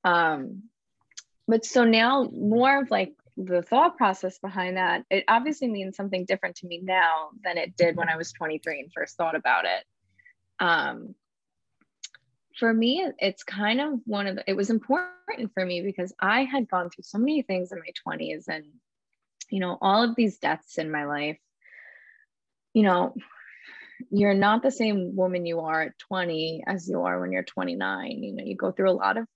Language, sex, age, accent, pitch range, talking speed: English, female, 20-39, American, 175-235 Hz, 190 wpm